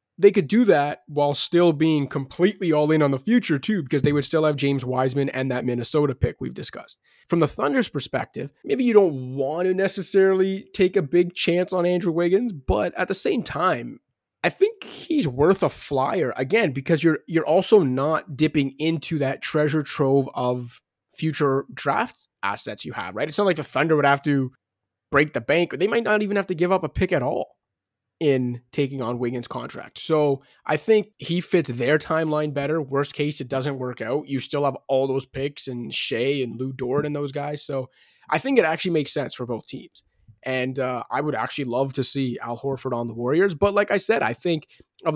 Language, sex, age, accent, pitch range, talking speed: English, male, 20-39, American, 130-170 Hz, 215 wpm